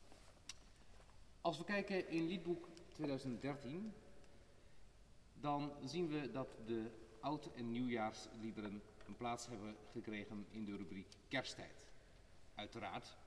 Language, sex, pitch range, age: Dutch, male, 105-135 Hz, 40-59